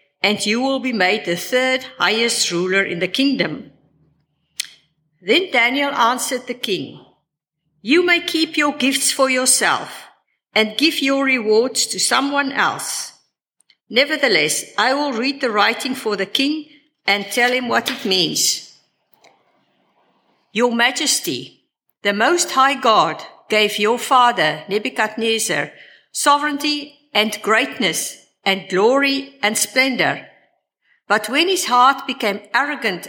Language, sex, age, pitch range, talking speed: English, female, 50-69, 200-270 Hz, 125 wpm